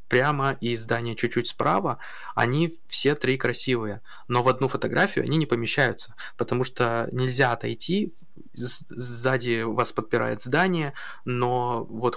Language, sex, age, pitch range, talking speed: Russian, male, 20-39, 115-140 Hz, 130 wpm